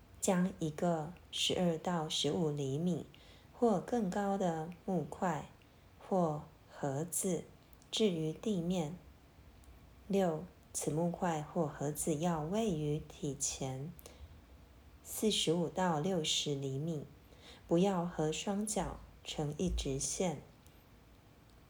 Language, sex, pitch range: Chinese, female, 150-195 Hz